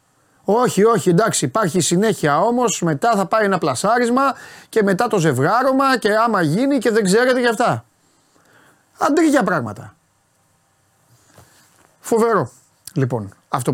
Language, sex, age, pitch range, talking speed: Greek, male, 30-49, 135-200 Hz, 120 wpm